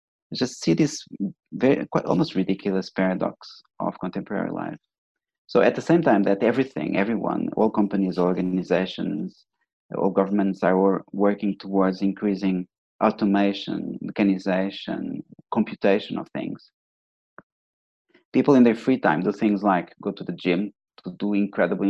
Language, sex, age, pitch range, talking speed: English, male, 30-49, 95-105 Hz, 135 wpm